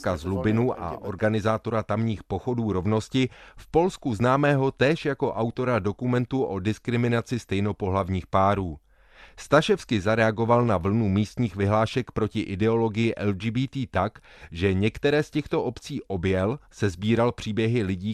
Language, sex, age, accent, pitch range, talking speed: Czech, male, 30-49, native, 100-125 Hz, 120 wpm